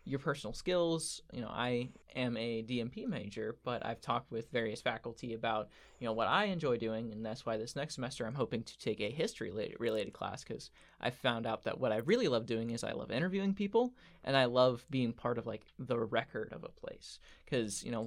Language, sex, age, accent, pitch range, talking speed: English, male, 20-39, American, 115-140 Hz, 225 wpm